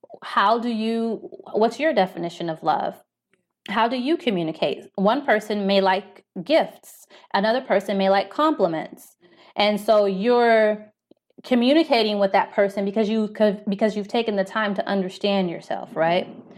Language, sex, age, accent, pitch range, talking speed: English, female, 20-39, American, 185-215 Hz, 150 wpm